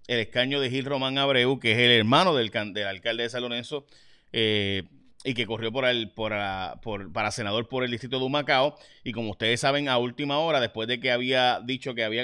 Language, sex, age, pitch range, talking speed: Spanish, male, 30-49, 115-145 Hz, 225 wpm